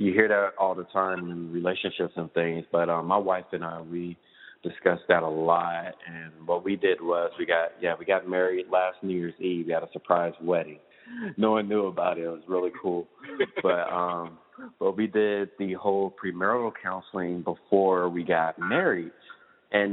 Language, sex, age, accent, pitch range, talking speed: English, male, 30-49, American, 85-100 Hz, 195 wpm